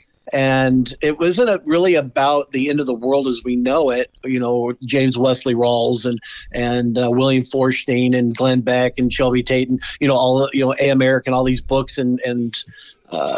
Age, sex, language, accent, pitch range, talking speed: 50-69, male, English, American, 125-145 Hz, 200 wpm